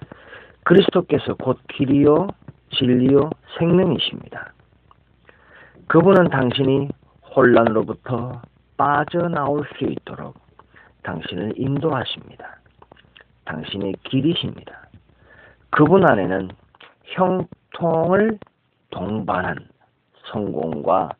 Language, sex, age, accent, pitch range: Korean, male, 40-59, native, 110-150 Hz